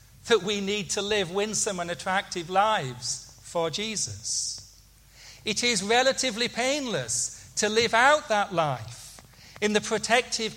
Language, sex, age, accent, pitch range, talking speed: English, male, 40-59, British, 130-205 Hz, 130 wpm